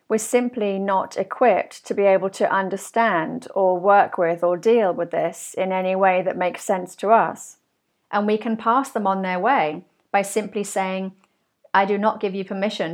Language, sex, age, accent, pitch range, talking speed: English, female, 40-59, British, 185-225 Hz, 190 wpm